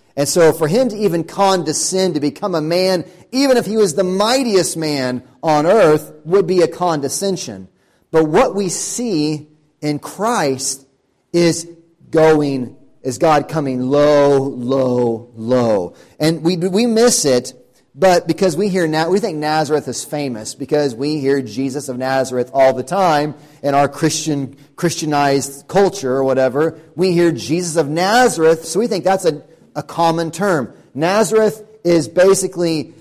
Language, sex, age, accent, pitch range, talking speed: English, male, 30-49, American, 140-185 Hz, 150 wpm